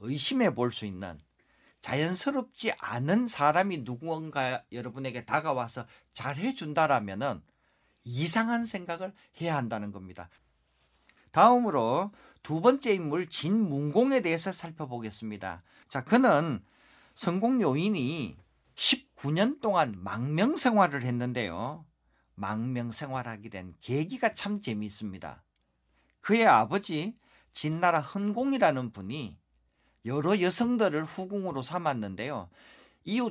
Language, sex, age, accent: Korean, male, 50-69, native